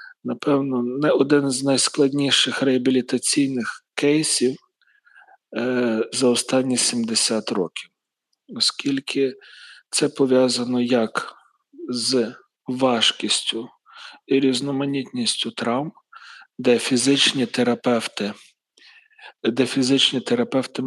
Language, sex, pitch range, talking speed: Ukrainian, male, 120-140 Hz, 75 wpm